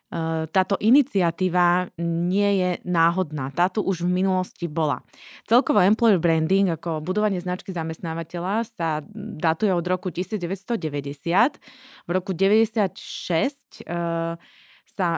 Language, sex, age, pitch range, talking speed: Slovak, female, 20-39, 165-205 Hz, 100 wpm